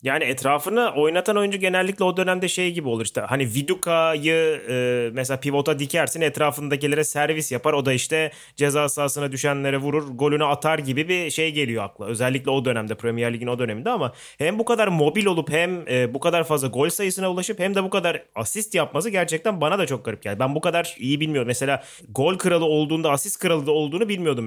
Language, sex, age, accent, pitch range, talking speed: Turkish, male, 30-49, native, 125-170 Hz, 200 wpm